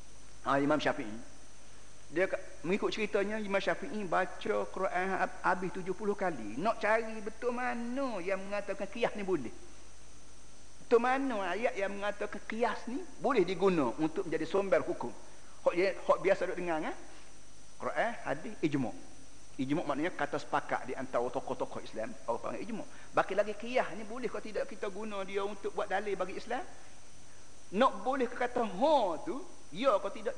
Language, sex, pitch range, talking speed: Malay, male, 150-215 Hz, 150 wpm